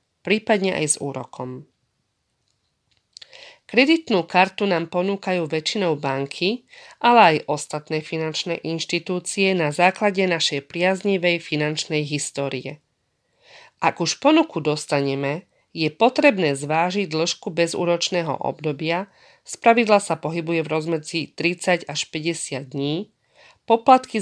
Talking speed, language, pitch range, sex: 100 wpm, Slovak, 150-190 Hz, female